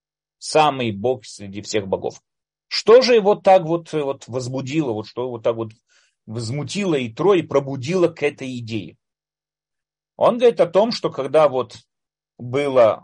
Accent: native